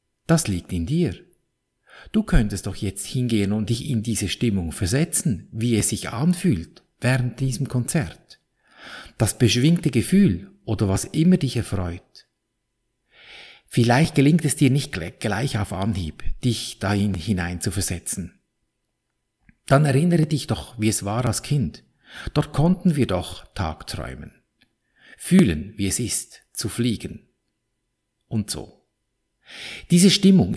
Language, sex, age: German, male, 50-69